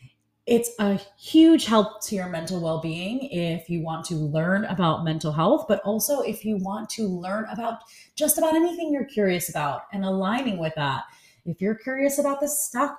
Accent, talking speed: American, 185 wpm